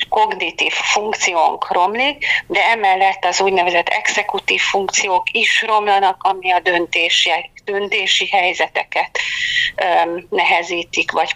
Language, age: Hungarian, 40-59